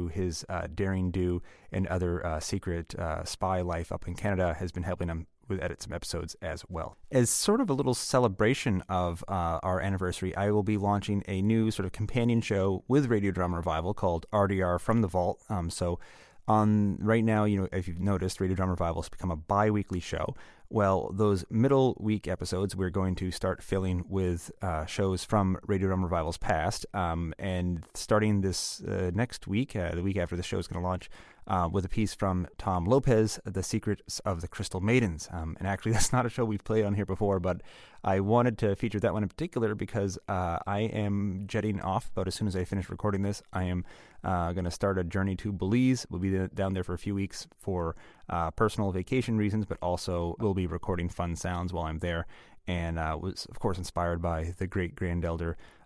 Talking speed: 210 wpm